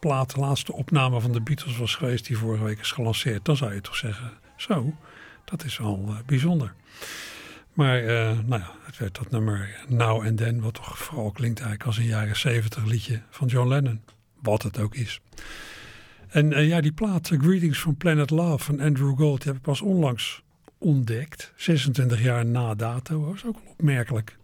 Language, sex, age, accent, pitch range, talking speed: Dutch, male, 60-79, Dutch, 115-150 Hz, 195 wpm